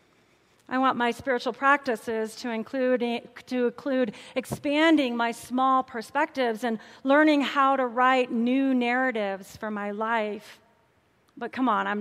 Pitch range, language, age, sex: 215-265 Hz, English, 40-59, female